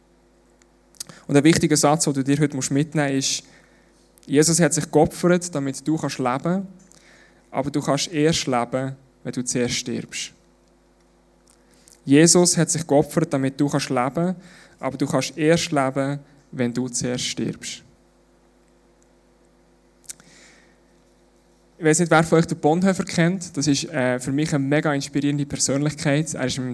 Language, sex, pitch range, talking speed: German, male, 125-155 Hz, 145 wpm